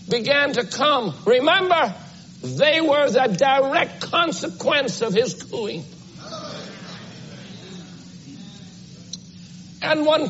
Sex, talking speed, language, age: male, 80 wpm, English, 60-79